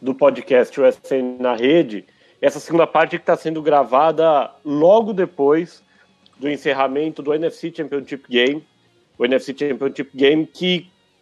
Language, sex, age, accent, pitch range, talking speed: English, male, 40-59, Brazilian, 135-180 Hz, 135 wpm